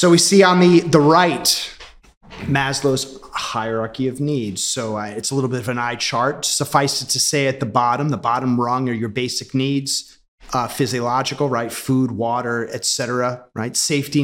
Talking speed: 180 wpm